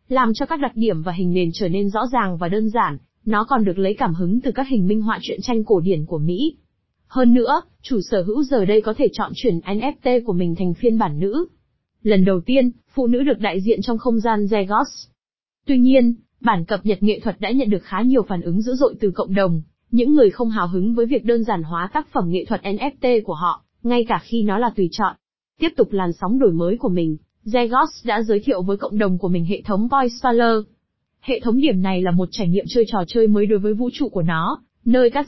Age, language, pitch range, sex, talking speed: 20-39, Vietnamese, 195-245 Hz, female, 245 wpm